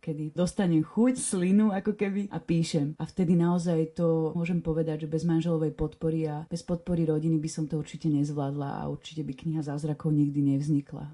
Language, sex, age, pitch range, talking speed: Slovak, female, 30-49, 160-185 Hz, 185 wpm